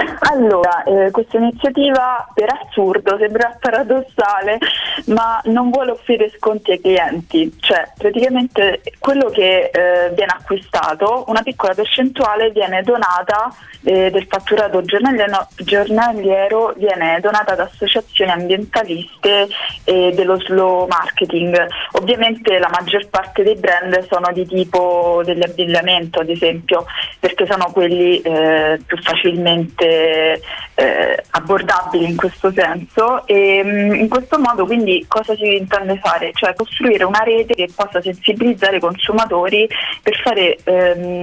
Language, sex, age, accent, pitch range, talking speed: Italian, female, 20-39, native, 180-220 Hz, 125 wpm